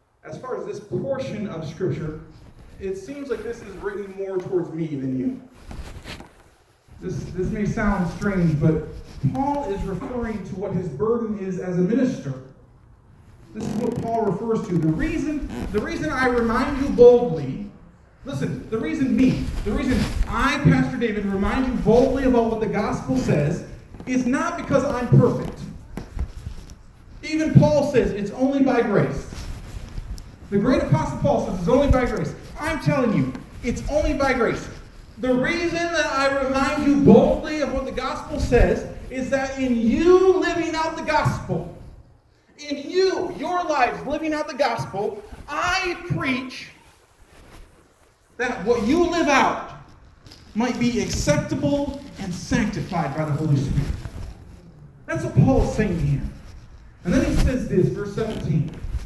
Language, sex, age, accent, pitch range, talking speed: English, male, 40-59, American, 170-275 Hz, 150 wpm